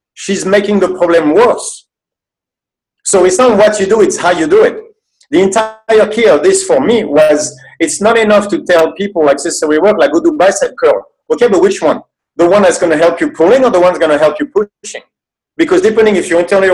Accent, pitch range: French, 165-280 Hz